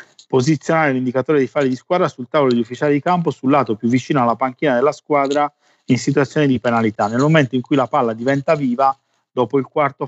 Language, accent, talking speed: Italian, native, 210 wpm